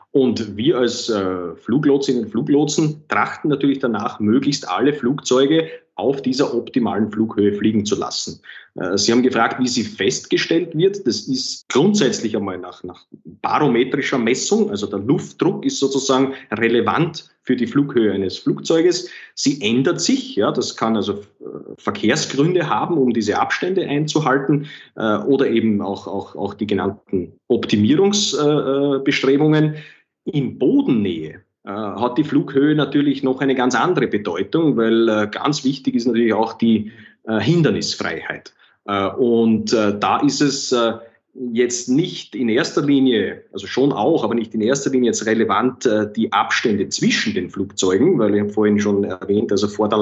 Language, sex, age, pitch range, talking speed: German, male, 30-49, 110-145 Hz, 150 wpm